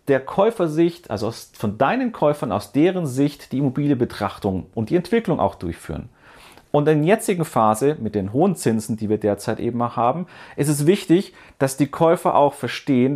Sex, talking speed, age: male, 180 wpm, 40-59